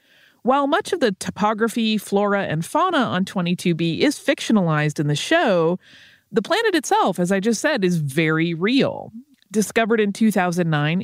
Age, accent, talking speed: 30-49, American, 150 wpm